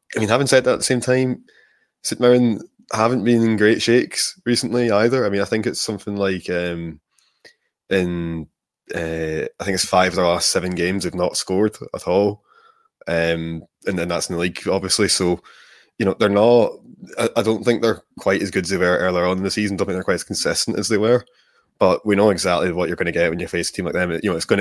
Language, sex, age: English, male, 20-39